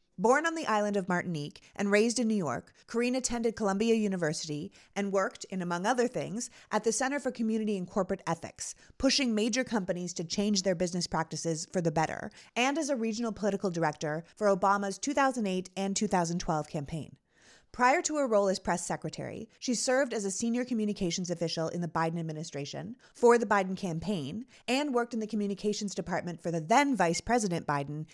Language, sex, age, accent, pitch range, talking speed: English, female, 30-49, American, 175-235 Hz, 180 wpm